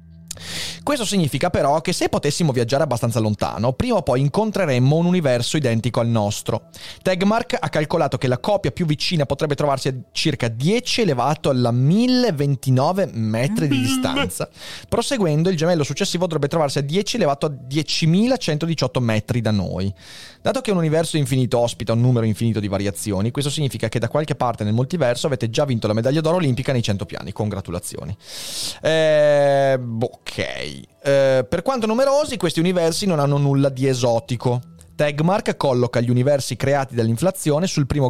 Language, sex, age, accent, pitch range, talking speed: Italian, male, 30-49, native, 120-165 Hz, 160 wpm